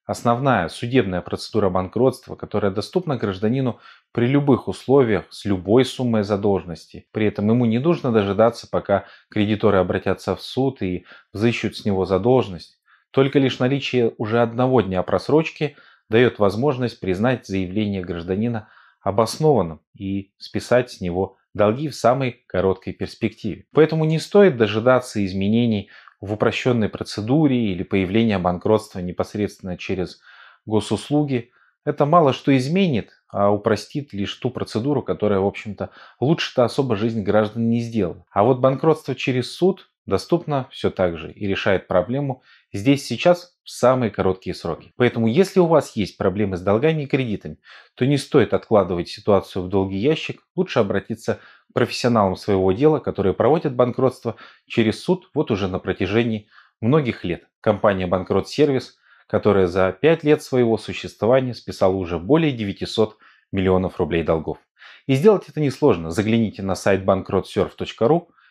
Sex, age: male, 20-39